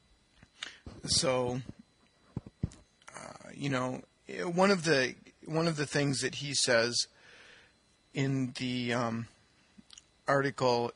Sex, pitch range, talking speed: male, 125-150 Hz, 100 wpm